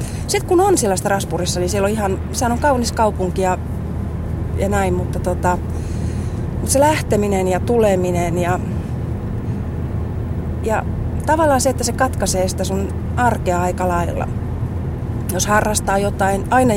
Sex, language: female, Finnish